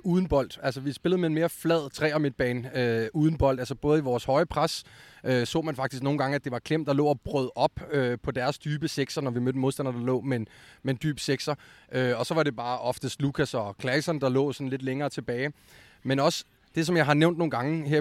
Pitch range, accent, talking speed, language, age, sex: 130-155 Hz, native, 265 wpm, Danish, 30-49, male